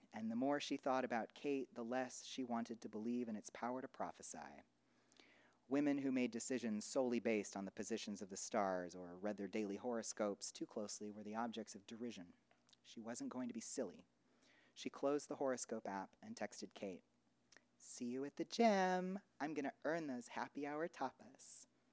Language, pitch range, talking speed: English, 110-140 Hz, 185 wpm